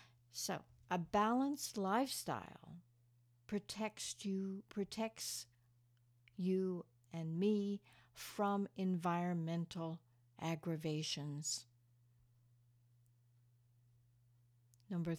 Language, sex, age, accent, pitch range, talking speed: English, female, 60-79, American, 120-185 Hz, 55 wpm